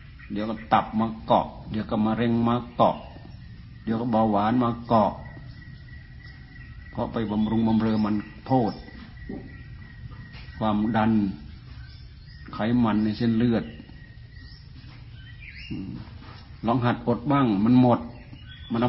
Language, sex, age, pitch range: Thai, male, 60-79, 105-120 Hz